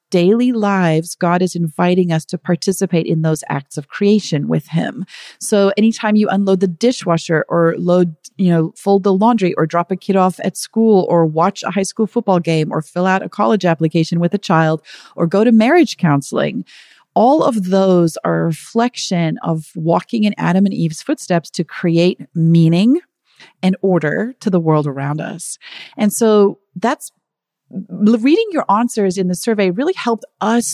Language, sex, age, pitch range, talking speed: English, female, 40-59, 170-225 Hz, 180 wpm